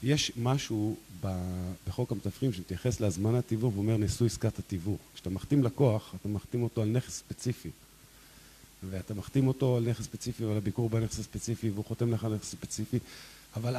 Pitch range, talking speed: 105-135 Hz, 160 wpm